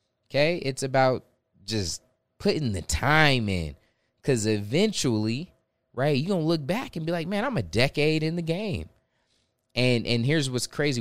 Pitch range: 105-130 Hz